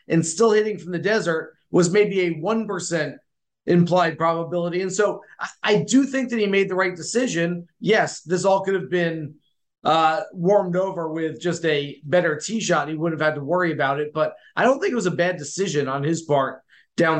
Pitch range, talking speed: 165-205 Hz, 205 wpm